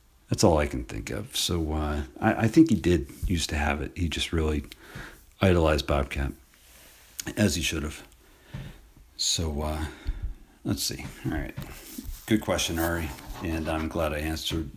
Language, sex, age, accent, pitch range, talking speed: English, male, 50-69, American, 75-85 Hz, 160 wpm